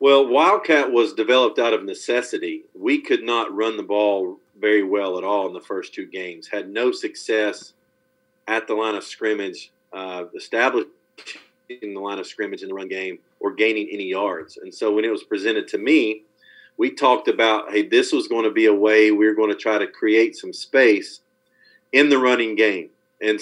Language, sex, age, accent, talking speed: English, male, 40-59, American, 200 wpm